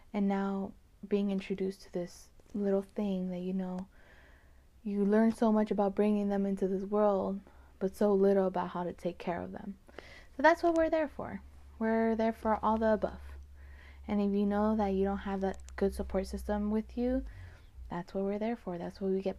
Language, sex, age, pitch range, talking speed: English, female, 20-39, 190-215 Hz, 205 wpm